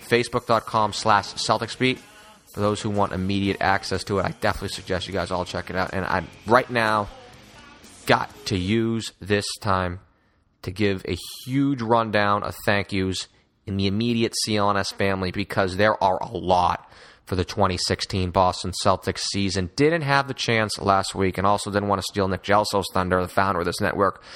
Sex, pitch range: male, 95-110 Hz